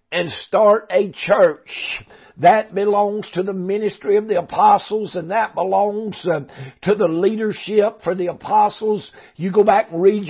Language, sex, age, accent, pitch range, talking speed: English, male, 60-79, American, 180-210 Hz, 150 wpm